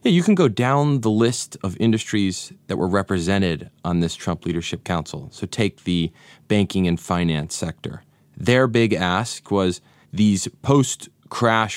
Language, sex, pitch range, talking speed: English, male, 85-105 Hz, 155 wpm